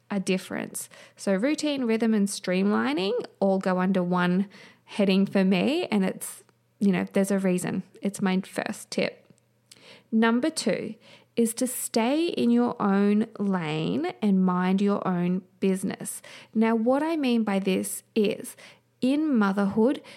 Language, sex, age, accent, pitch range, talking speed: English, female, 20-39, Australian, 190-225 Hz, 145 wpm